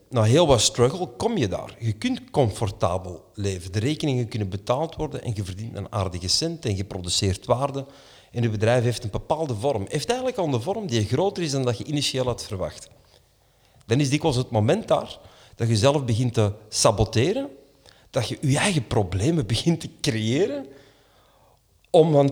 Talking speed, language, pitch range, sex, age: 185 wpm, Dutch, 100-140 Hz, male, 40-59